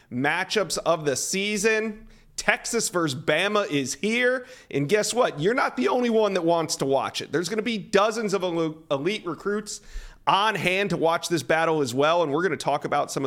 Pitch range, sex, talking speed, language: 140-185 Hz, male, 205 wpm, English